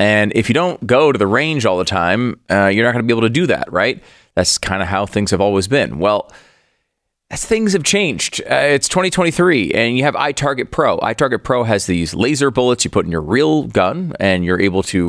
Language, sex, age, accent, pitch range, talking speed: English, male, 30-49, American, 90-125 Hz, 235 wpm